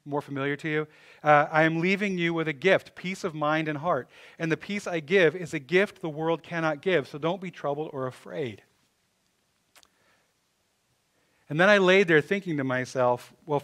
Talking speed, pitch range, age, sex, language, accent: 195 wpm, 135-175 Hz, 40-59, male, English, American